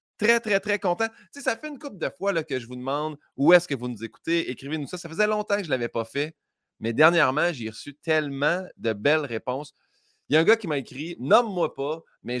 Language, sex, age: French, male, 30-49